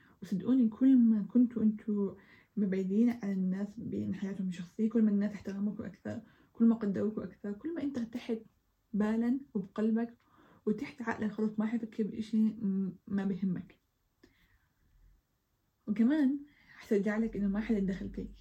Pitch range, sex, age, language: 200-230 Hz, female, 10-29, Arabic